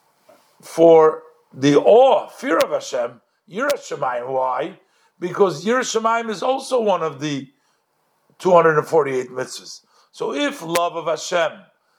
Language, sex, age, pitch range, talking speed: English, male, 50-69, 160-210 Hz, 110 wpm